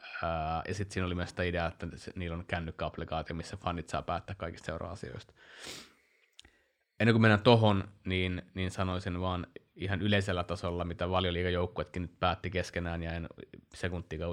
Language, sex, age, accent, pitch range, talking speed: Finnish, male, 20-39, native, 85-95 Hz, 155 wpm